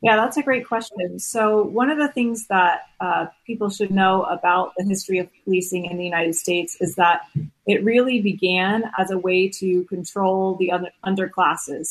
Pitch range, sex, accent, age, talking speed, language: 180-210 Hz, female, American, 30-49, 180 wpm, English